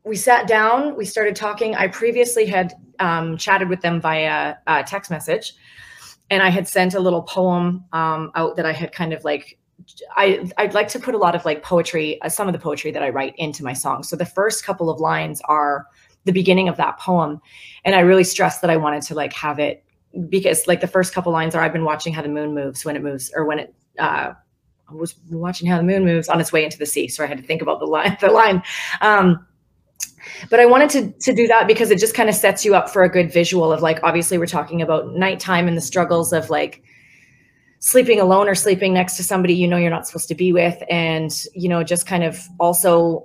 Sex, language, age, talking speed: female, English, 30-49, 245 wpm